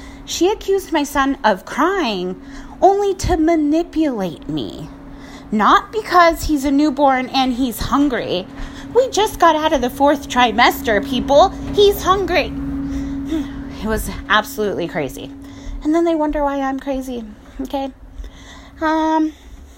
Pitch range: 215-300 Hz